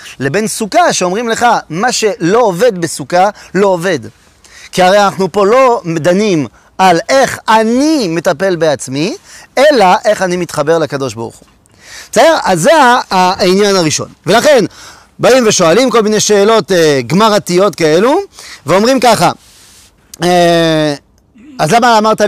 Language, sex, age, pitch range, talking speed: French, male, 30-49, 160-220 Hz, 120 wpm